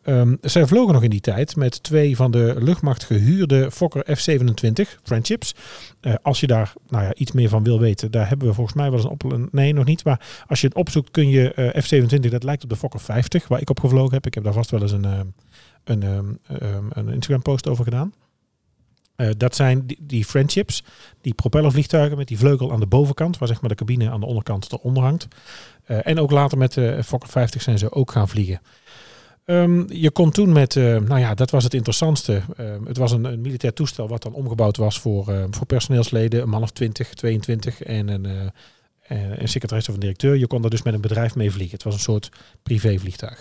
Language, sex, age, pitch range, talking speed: Dutch, male, 40-59, 110-140 Hz, 225 wpm